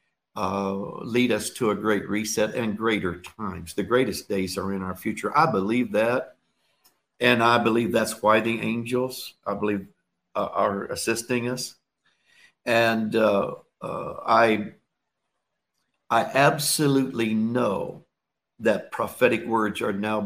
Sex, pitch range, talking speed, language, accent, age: male, 100-120 Hz, 135 wpm, English, American, 60-79